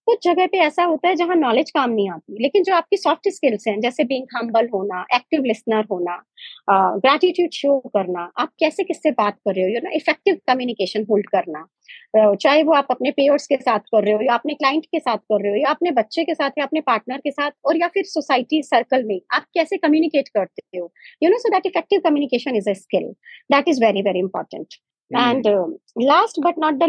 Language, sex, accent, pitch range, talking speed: Hindi, male, native, 240-335 Hz, 230 wpm